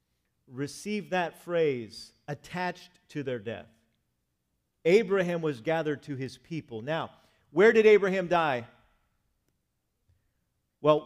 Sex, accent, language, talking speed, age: male, American, English, 105 wpm, 50-69